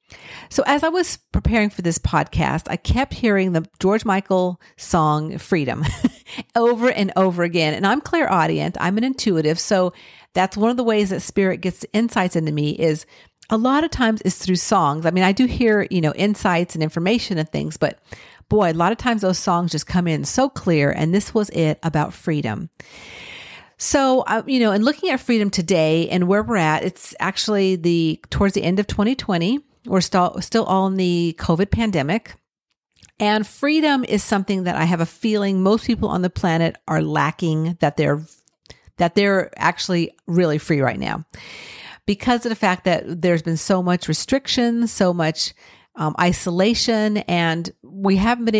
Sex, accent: female, American